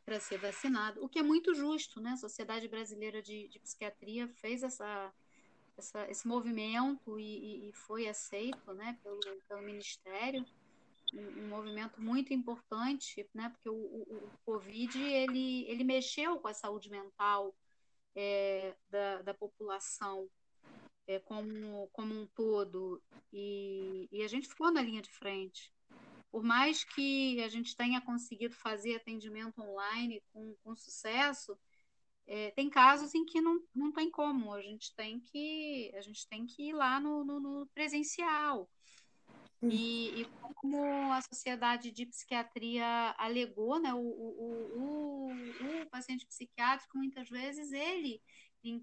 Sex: female